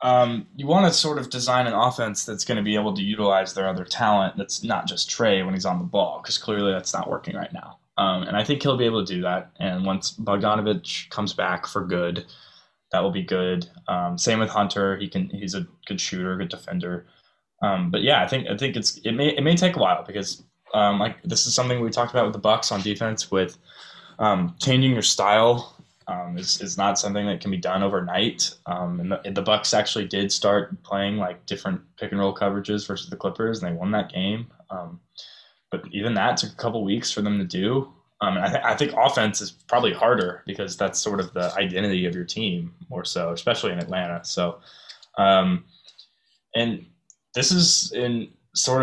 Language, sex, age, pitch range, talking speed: English, male, 10-29, 95-125 Hz, 220 wpm